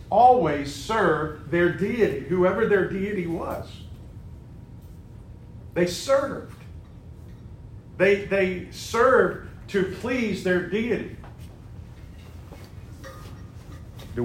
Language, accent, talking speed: English, American, 75 wpm